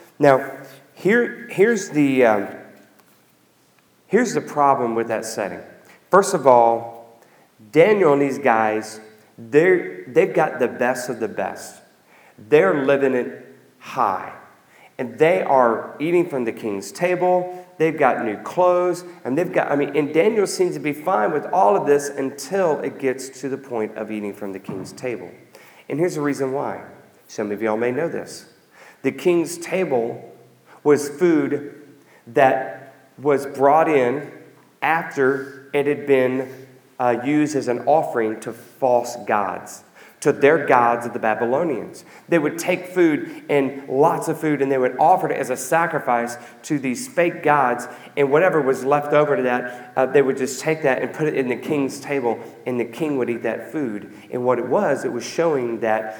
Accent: American